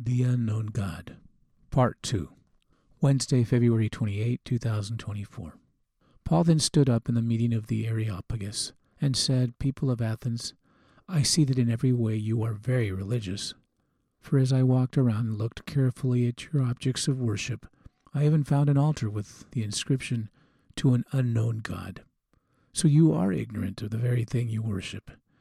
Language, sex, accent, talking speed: English, male, American, 165 wpm